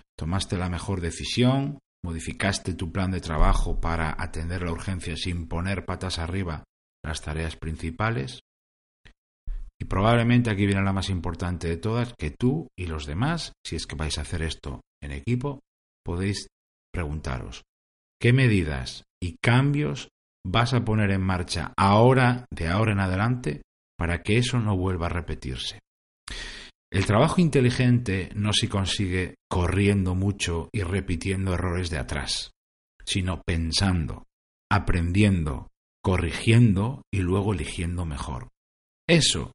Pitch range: 85-105 Hz